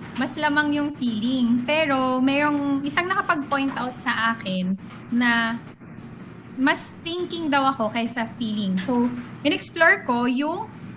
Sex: female